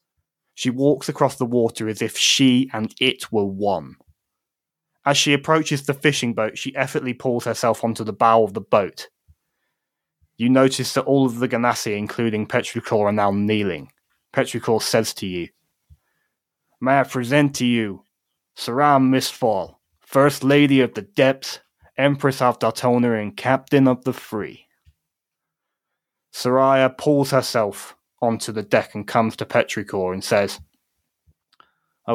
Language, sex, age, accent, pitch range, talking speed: English, male, 20-39, British, 110-135 Hz, 145 wpm